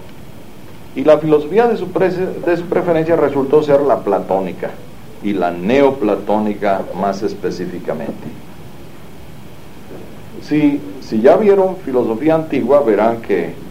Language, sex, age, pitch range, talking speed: English, male, 60-79, 105-155 Hz, 115 wpm